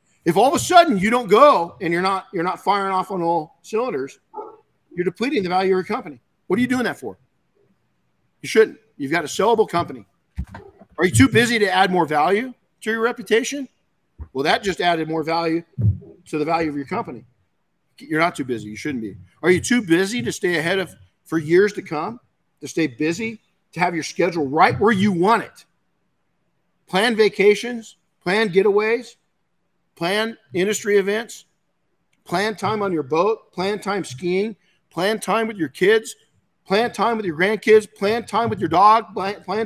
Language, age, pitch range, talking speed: English, 50-69, 155-215 Hz, 190 wpm